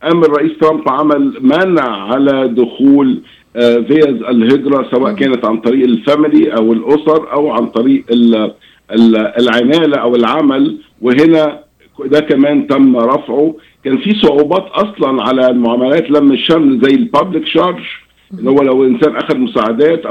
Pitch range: 125-175 Hz